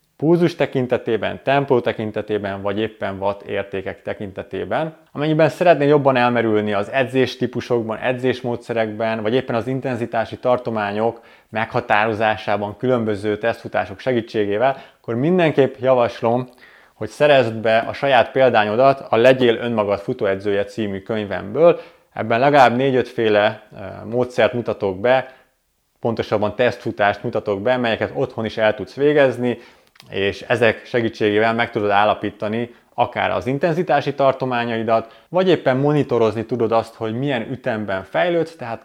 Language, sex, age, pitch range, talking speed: Hungarian, male, 20-39, 105-130 Hz, 115 wpm